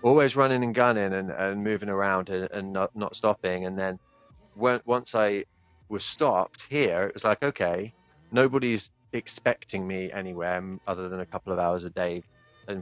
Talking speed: 180 wpm